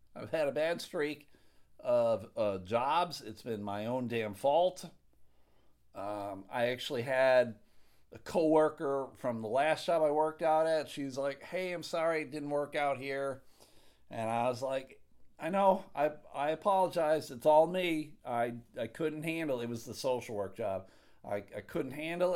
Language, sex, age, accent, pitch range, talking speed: English, male, 50-69, American, 120-160 Hz, 175 wpm